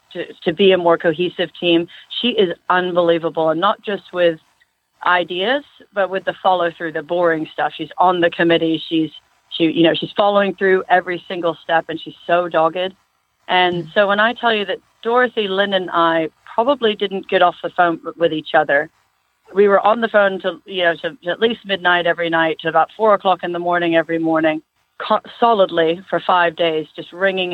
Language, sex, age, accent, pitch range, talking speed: English, female, 40-59, American, 165-195 Hz, 195 wpm